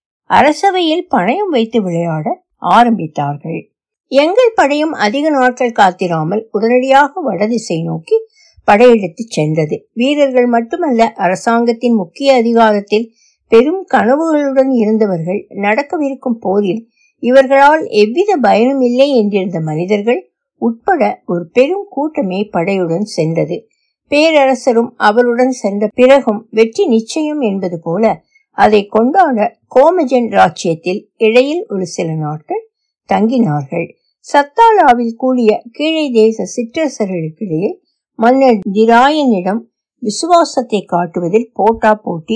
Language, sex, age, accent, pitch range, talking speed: Tamil, female, 60-79, native, 205-280 Hz, 75 wpm